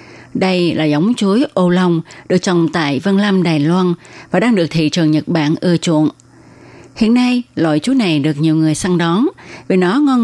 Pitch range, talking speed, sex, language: 155-210 Hz, 205 wpm, female, Vietnamese